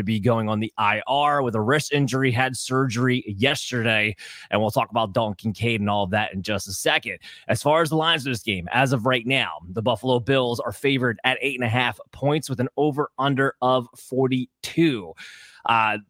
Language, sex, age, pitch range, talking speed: English, male, 20-39, 115-145 Hz, 215 wpm